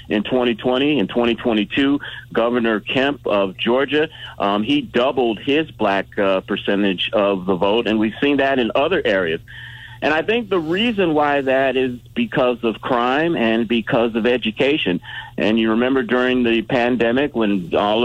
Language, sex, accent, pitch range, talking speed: English, male, American, 105-130 Hz, 160 wpm